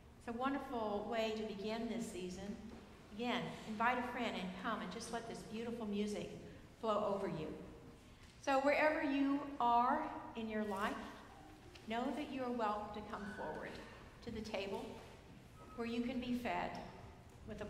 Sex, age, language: female, 60-79, English